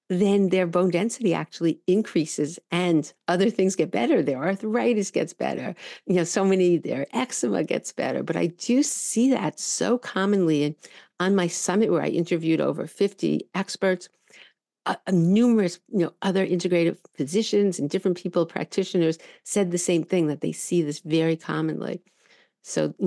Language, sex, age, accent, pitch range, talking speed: English, female, 50-69, American, 165-200 Hz, 160 wpm